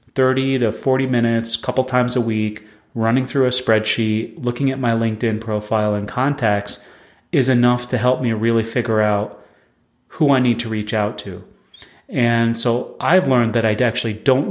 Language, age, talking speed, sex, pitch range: English, 30-49, 180 wpm, male, 110-130 Hz